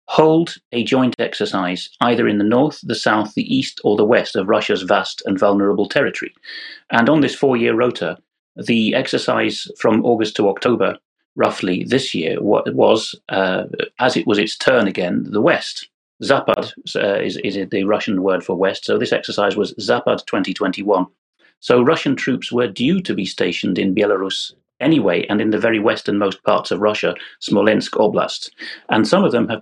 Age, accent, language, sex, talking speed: 30-49, British, English, male, 175 wpm